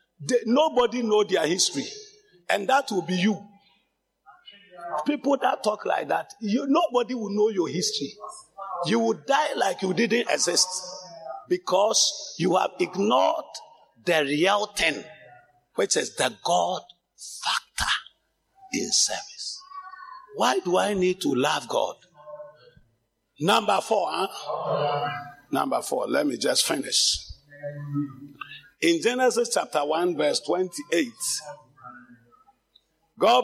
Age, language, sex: 50-69, English, male